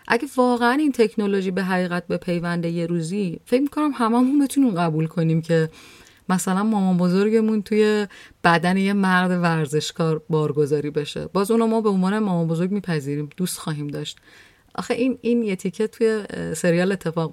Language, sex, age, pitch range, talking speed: Persian, female, 30-49, 165-225 Hz, 165 wpm